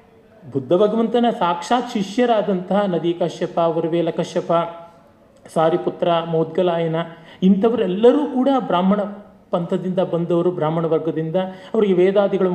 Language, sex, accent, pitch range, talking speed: Kannada, male, native, 170-230 Hz, 90 wpm